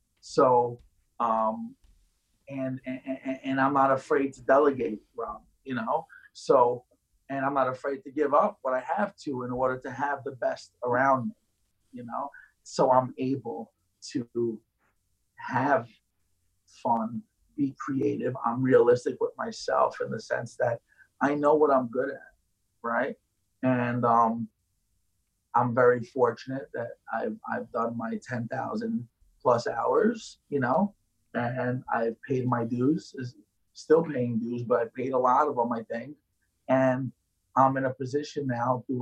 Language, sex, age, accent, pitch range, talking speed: English, male, 30-49, American, 115-135 Hz, 150 wpm